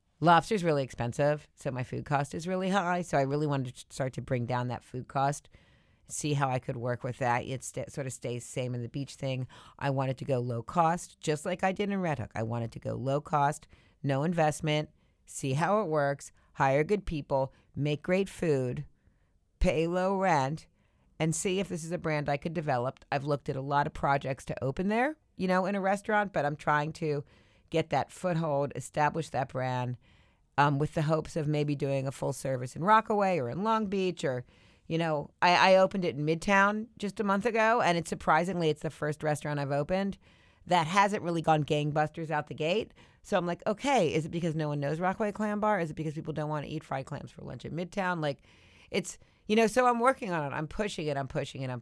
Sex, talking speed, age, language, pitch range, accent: female, 230 wpm, 40-59, English, 135-180 Hz, American